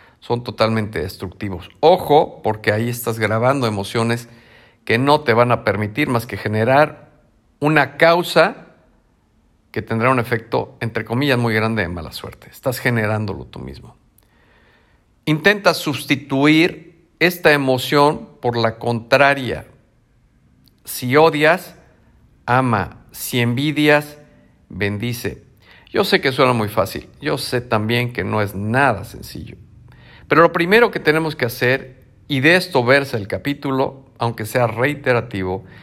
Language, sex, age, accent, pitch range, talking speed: Spanish, male, 50-69, Mexican, 105-135 Hz, 130 wpm